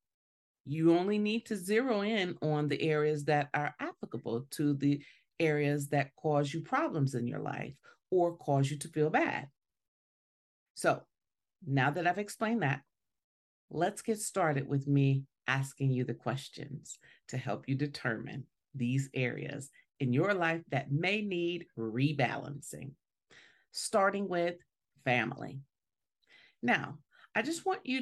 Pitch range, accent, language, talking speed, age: 135-180 Hz, American, English, 135 wpm, 40-59